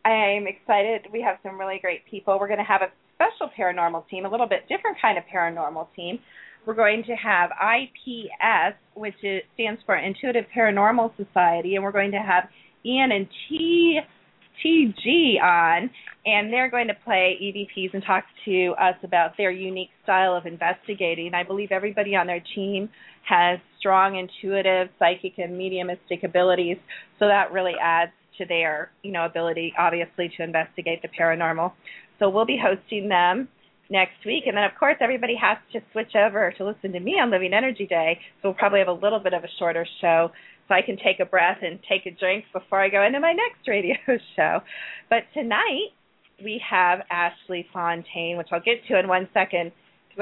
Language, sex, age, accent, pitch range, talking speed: English, female, 30-49, American, 180-215 Hz, 185 wpm